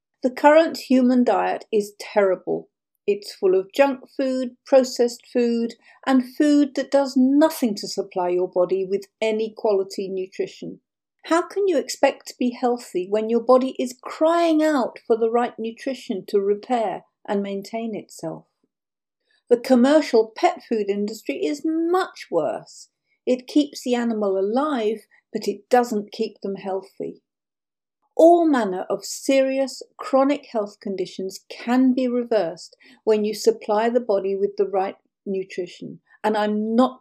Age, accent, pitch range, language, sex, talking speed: 50-69, British, 200-275 Hz, English, female, 145 wpm